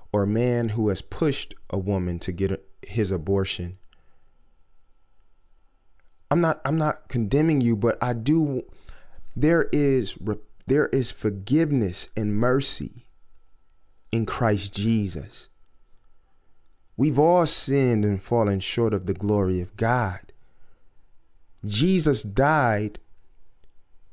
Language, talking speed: English, 110 wpm